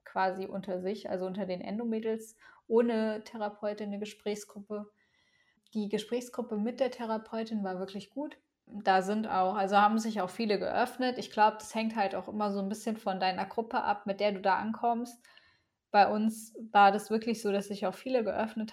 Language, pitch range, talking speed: German, 205-225 Hz, 185 wpm